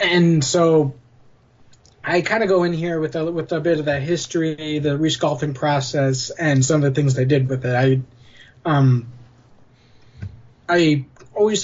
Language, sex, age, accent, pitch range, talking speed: English, male, 20-39, American, 130-175 Hz, 170 wpm